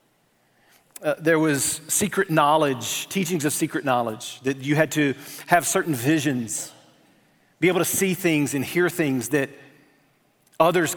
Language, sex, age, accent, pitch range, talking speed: English, male, 40-59, American, 130-165 Hz, 140 wpm